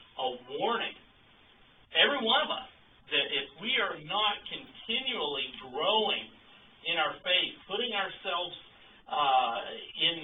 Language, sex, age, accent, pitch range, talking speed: English, male, 50-69, American, 140-200 Hz, 115 wpm